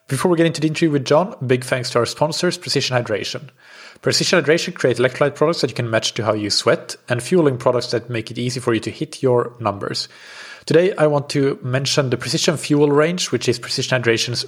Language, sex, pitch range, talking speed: English, male, 115-140 Hz, 225 wpm